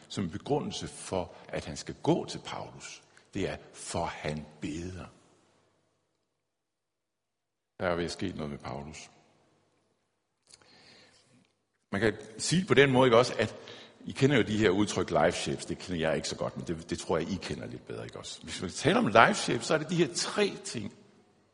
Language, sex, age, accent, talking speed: Danish, male, 60-79, native, 190 wpm